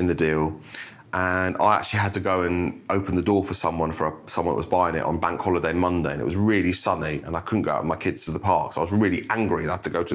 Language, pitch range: English, 95-125 Hz